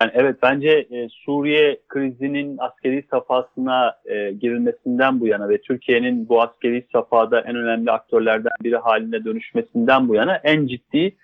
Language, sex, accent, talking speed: Turkish, male, native, 145 wpm